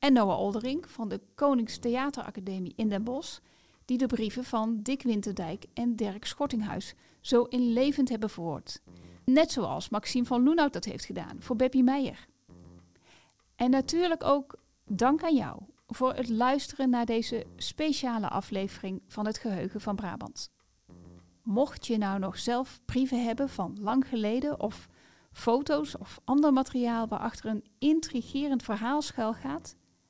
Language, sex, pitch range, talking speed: Dutch, female, 195-270 Hz, 140 wpm